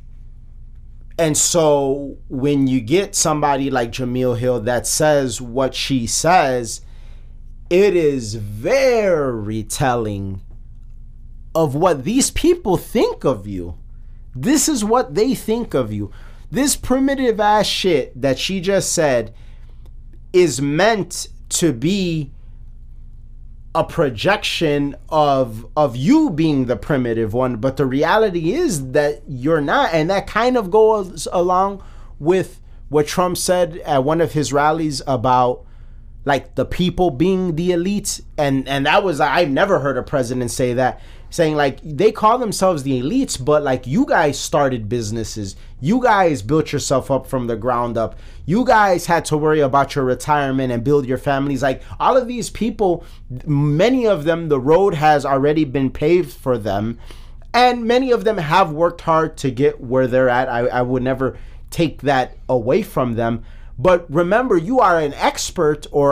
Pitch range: 125-180 Hz